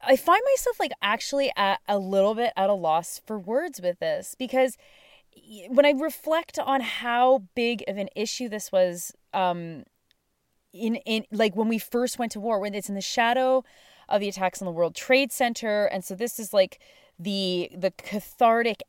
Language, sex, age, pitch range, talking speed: English, female, 20-39, 195-270 Hz, 185 wpm